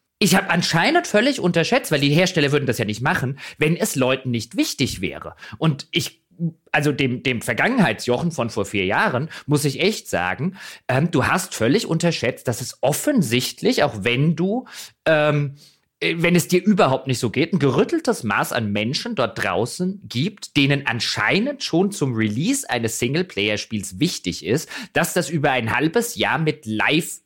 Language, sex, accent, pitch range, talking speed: German, male, German, 125-190 Hz, 170 wpm